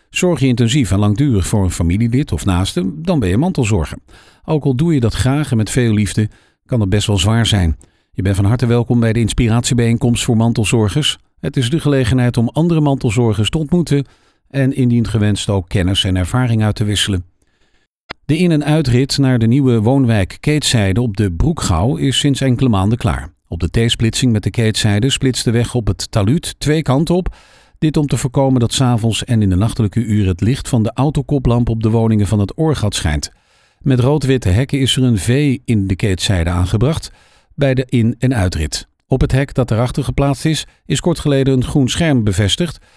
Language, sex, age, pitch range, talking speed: Dutch, male, 50-69, 105-135 Hz, 205 wpm